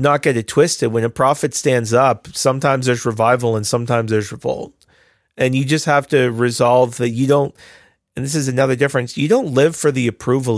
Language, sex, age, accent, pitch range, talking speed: English, male, 40-59, American, 120-145 Hz, 205 wpm